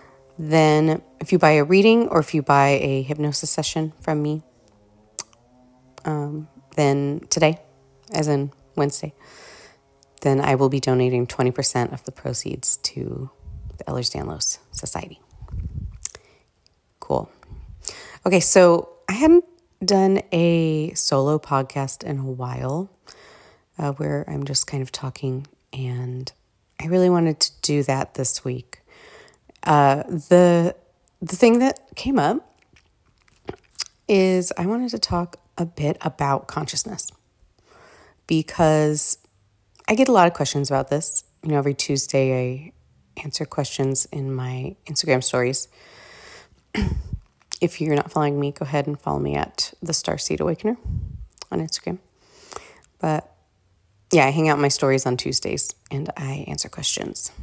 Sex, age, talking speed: female, 30-49, 135 wpm